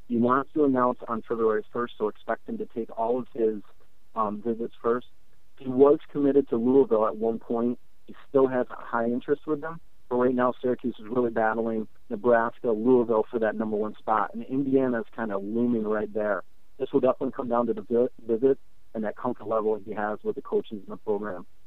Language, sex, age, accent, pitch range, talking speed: English, male, 40-59, American, 110-130 Hz, 210 wpm